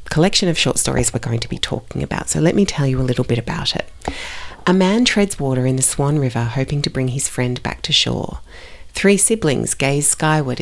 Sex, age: female, 40-59